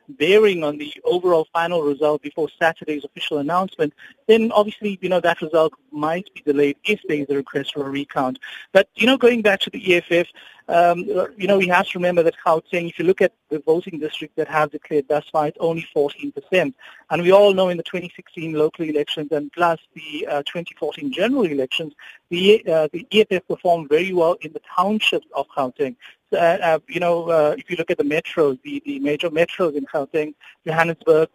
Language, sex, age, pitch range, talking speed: English, male, 50-69, 155-190 Hz, 200 wpm